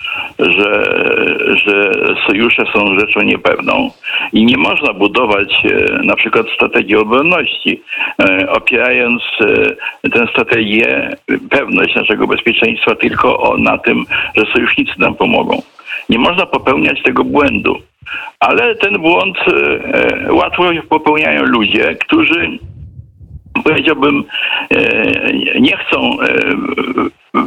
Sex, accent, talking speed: male, native, 110 wpm